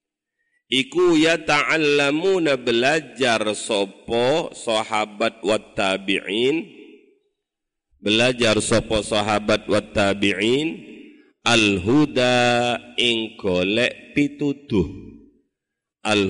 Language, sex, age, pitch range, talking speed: Indonesian, male, 40-59, 105-140 Hz, 70 wpm